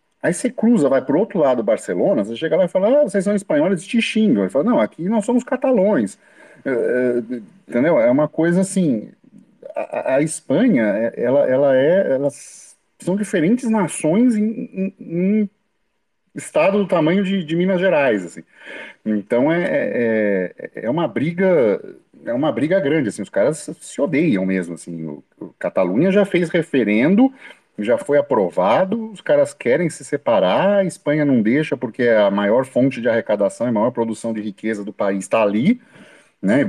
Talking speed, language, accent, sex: 175 wpm, Portuguese, Brazilian, male